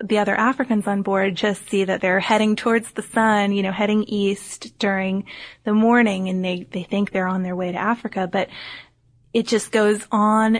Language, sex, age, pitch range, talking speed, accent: English, female, 20-39, 195-225 Hz, 200 wpm, American